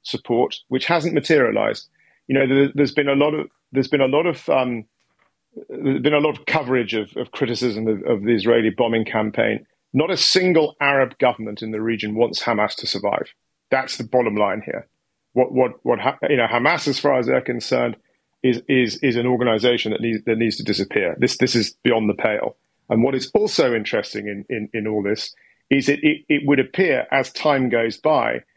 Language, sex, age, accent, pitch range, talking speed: English, male, 40-59, British, 115-145 Hz, 215 wpm